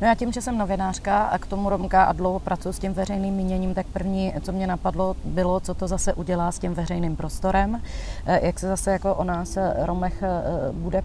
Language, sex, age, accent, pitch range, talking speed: Czech, female, 30-49, native, 175-190 Hz, 210 wpm